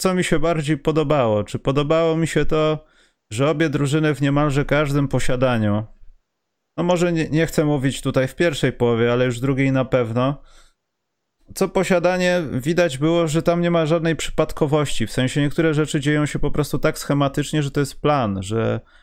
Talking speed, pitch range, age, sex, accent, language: 185 wpm, 110-150 Hz, 30-49, male, native, Polish